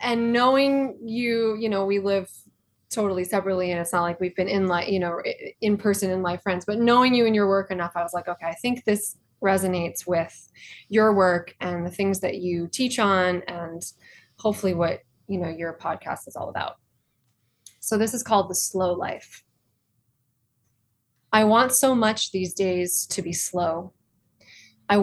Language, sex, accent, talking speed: English, female, American, 180 wpm